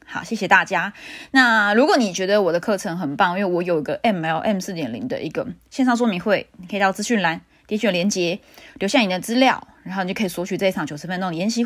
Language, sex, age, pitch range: Chinese, female, 20-39, 180-245 Hz